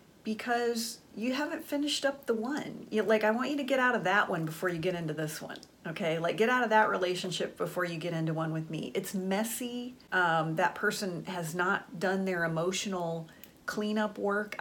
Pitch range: 175-215 Hz